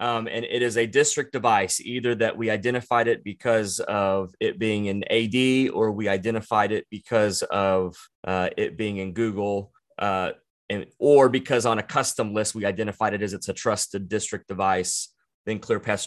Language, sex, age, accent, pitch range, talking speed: English, male, 20-39, American, 100-120 Hz, 180 wpm